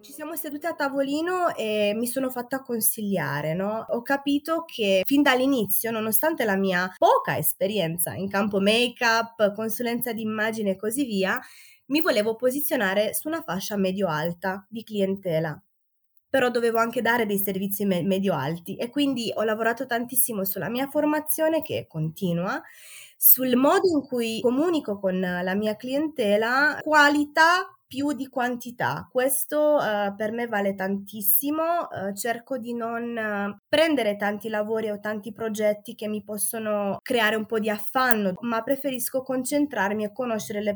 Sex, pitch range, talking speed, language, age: female, 195-260 Hz, 150 wpm, Italian, 20-39